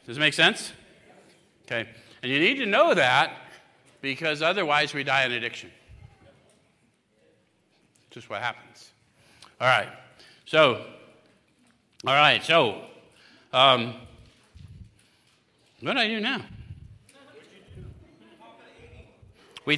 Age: 50-69